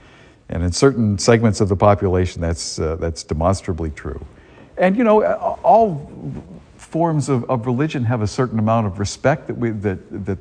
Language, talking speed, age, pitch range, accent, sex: English, 175 wpm, 50-69, 85-115 Hz, American, male